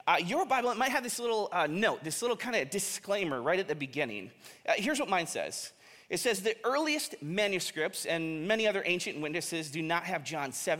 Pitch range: 160-215 Hz